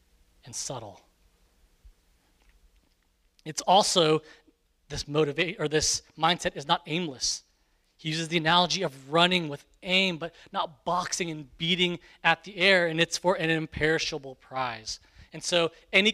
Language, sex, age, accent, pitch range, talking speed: English, male, 30-49, American, 135-175 Hz, 140 wpm